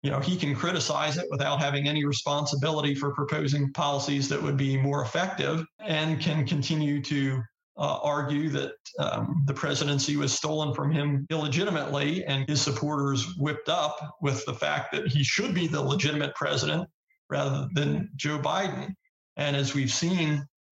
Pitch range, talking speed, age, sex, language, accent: 140-155 Hz, 160 wpm, 40-59, male, English, American